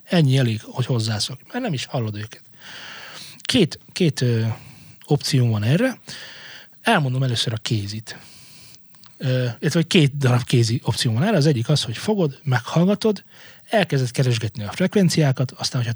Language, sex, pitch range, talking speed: Hungarian, male, 120-155 Hz, 145 wpm